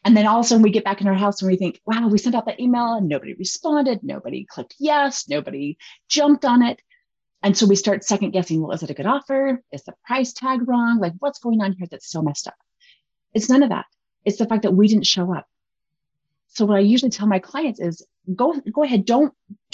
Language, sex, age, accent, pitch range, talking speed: English, female, 30-49, American, 185-255 Hz, 245 wpm